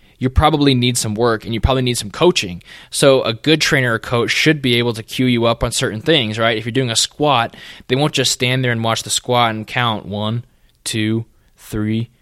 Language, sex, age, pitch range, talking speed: English, male, 20-39, 110-130 Hz, 230 wpm